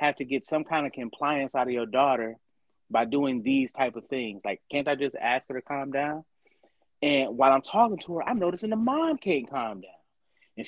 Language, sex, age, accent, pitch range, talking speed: English, male, 30-49, American, 135-225 Hz, 225 wpm